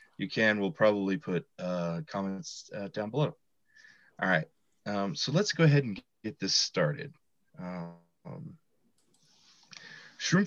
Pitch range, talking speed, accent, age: 90-150 Hz, 130 wpm, American, 30-49